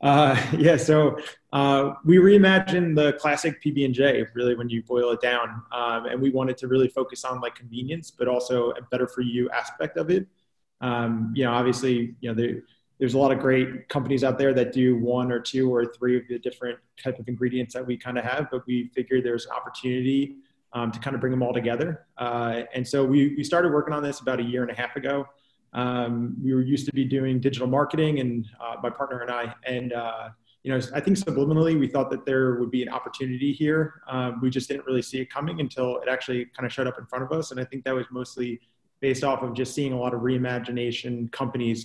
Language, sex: English, male